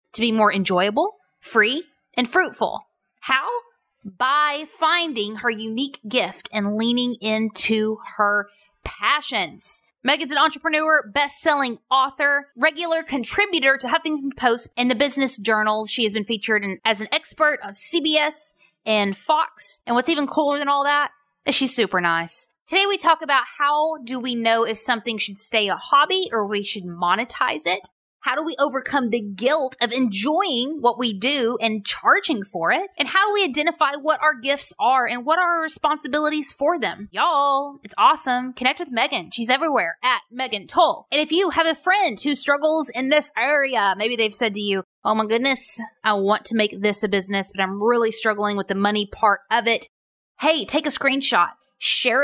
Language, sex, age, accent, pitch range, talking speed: English, female, 20-39, American, 220-300 Hz, 180 wpm